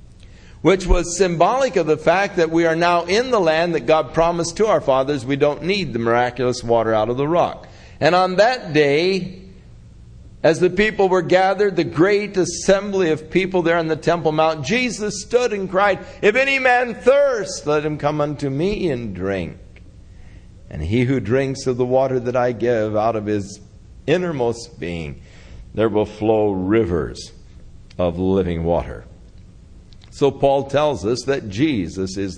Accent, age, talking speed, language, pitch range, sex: American, 50-69, 170 wpm, English, 105-170 Hz, male